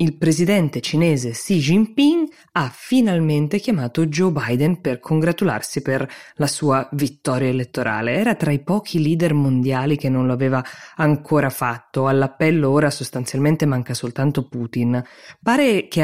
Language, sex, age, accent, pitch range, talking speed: Italian, female, 20-39, native, 130-160 Hz, 140 wpm